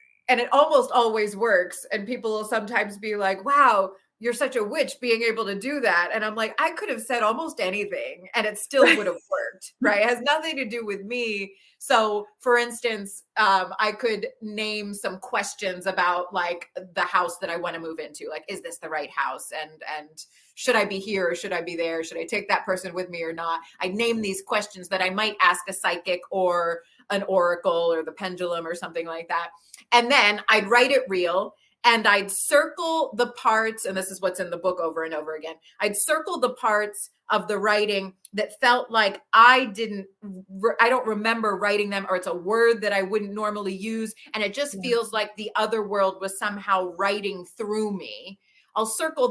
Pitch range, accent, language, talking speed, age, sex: 185-230 Hz, American, English, 210 wpm, 30-49, female